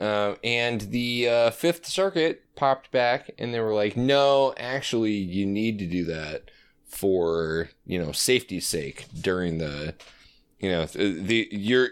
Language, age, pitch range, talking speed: English, 20-39, 95-130 Hz, 150 wpm